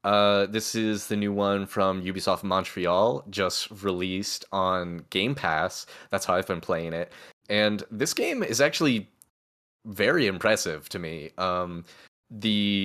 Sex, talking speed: male, 145 wpm